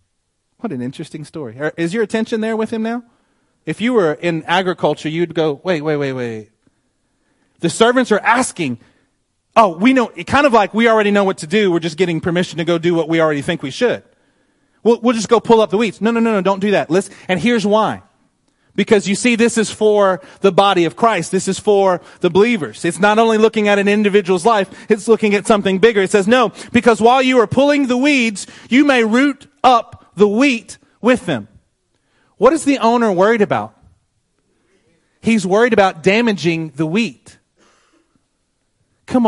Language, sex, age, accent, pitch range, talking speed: English, male, 30-49, American, 150-225 Hz, 195 wpm